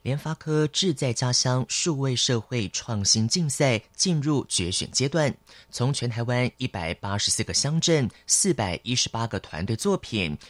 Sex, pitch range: male, 105-150 Hz